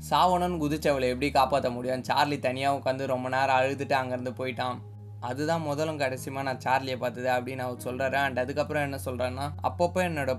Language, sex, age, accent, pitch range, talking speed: Tamil, male, 20-39, native, 130-150 Hz, 170 wpm